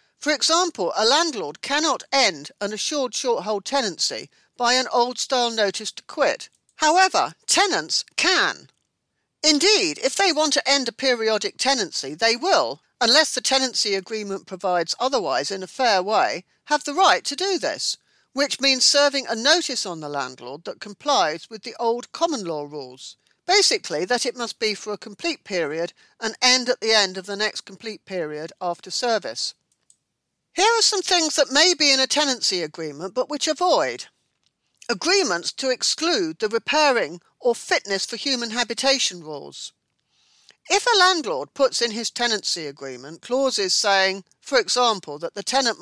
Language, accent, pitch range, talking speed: English, British, 205-300 Hz, 160 wpm